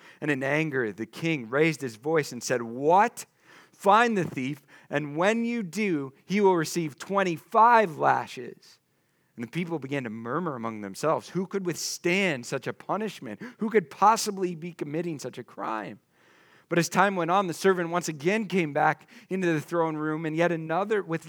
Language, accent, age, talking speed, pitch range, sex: English, American, 40-59, 180 wpm, 130-190 Hz, male